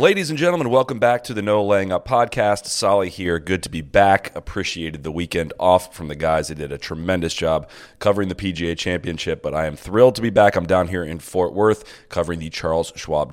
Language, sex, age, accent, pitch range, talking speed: English, male, 30-49, American, 85-105 Hz, 225 wpm